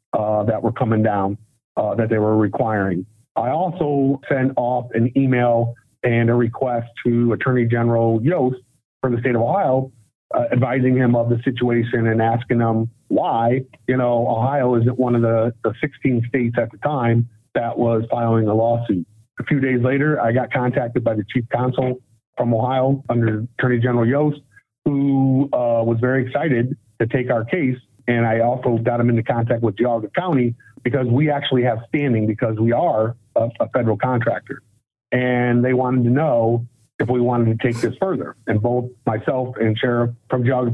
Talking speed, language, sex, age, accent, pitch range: 180 wpm, English, male, 50-69, American, 115-130 Hz